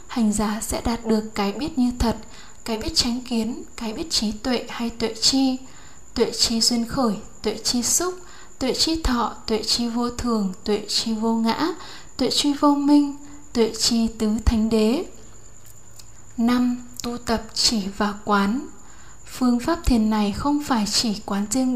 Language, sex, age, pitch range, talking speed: Vietnamese, female, 10-29, 220-245 Hz, 170 wpm